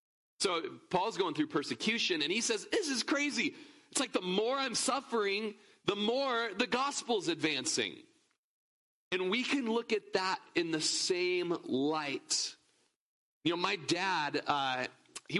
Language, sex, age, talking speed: English, male, 30-49, 150 wpm